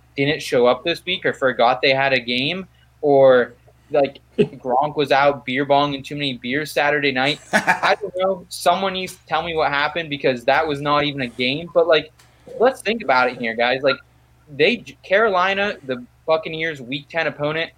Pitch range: 135-170 Hz